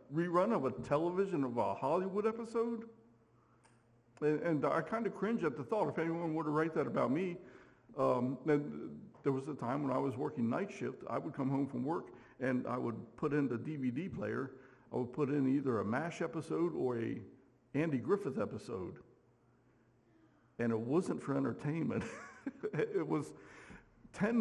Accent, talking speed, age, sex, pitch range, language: American, 175 wpm, 60-79, male, 120-155 Hz, English